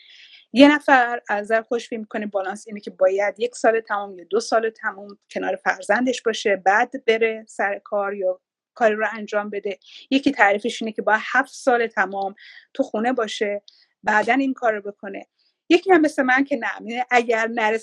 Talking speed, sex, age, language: 180 wpm, female, 30-49, Persian